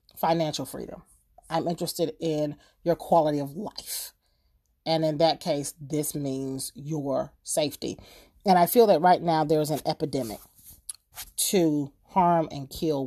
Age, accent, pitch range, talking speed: 30-49, American, 150-185 Hz, 140 wpm